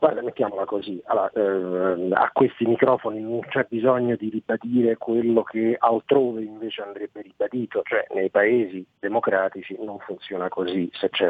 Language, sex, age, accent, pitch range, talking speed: Italian, male, 40-59, native, 105-135 Hz, 150 wpm